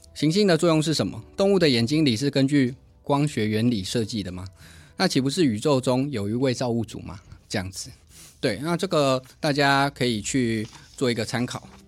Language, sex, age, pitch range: Chinese, male, 20-39, 110-145 Hz